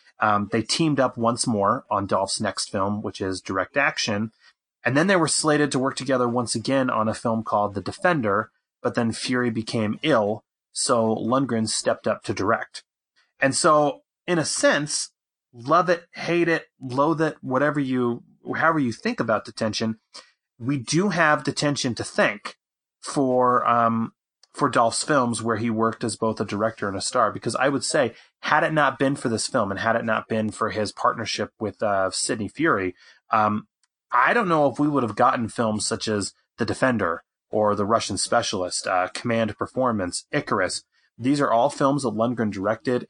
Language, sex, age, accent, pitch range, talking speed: English, male, 30-49, American, 110-135 Hz, 180 wpm